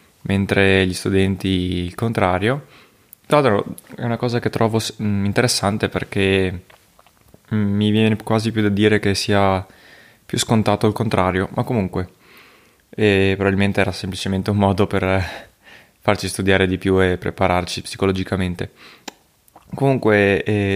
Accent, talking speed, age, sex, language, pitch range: native, 125 wpm, 20-39, male, Italian, 95-105 Hz